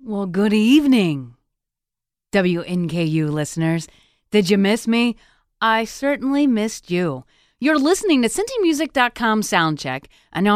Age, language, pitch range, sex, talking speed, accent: 30-49, English, 190-280 Hz, female, 115 wpm, American